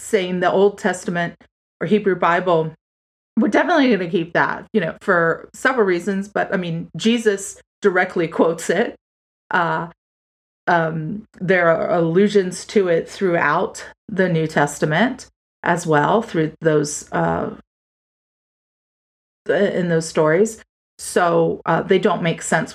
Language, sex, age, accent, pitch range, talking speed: English, female, 30-49, American, 160-200 Hz, 130 wpm